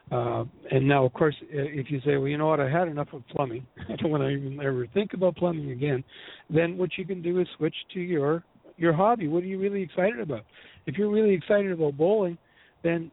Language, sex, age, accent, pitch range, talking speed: English, male, 60-79, American, 140-175 Hz, 235 wpm